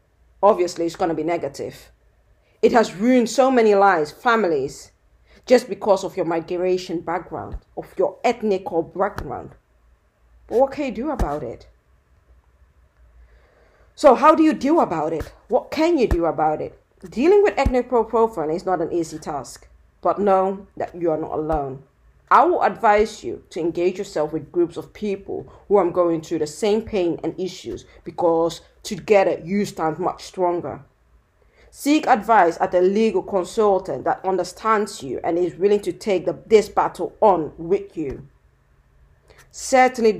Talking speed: 155 wpm